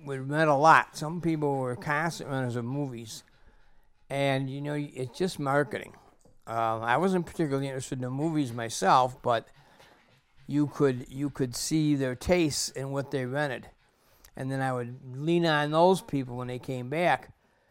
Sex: male